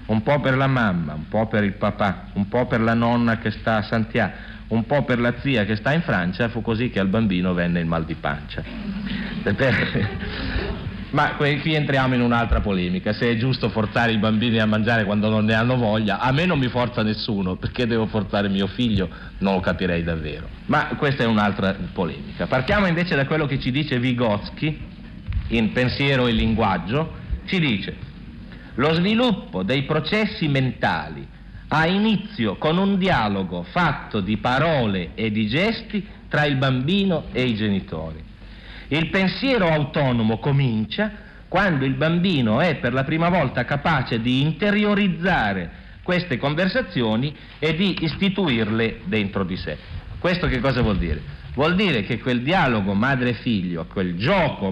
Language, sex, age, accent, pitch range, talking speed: Italian, male, 50-69, native, 105-155 Hz, 165 wpm